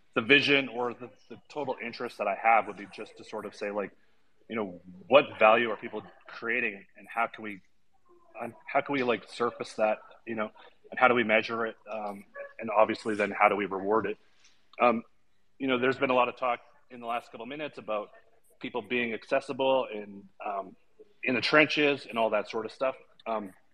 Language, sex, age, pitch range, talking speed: English, male, 30-49, 110-130 Hz, 215 wpm